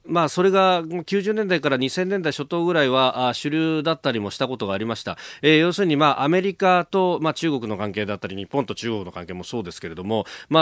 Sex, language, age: male, Japanese, 40-59